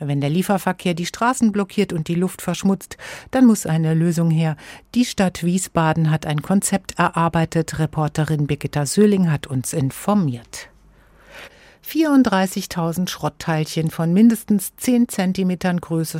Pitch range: 160-205 Hz